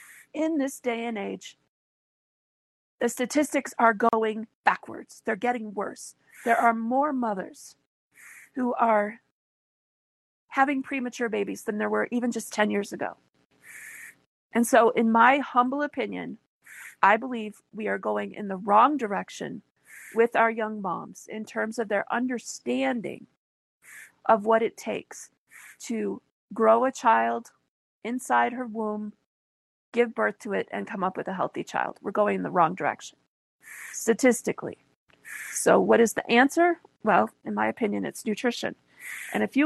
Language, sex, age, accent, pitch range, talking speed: English, female, 40-59, American, 215-255 Hz, 145 wpm